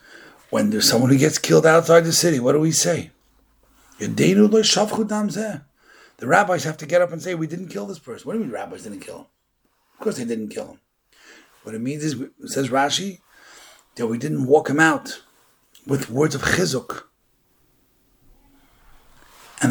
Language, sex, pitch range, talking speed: English, male, 130-210 Hz, 175 wpm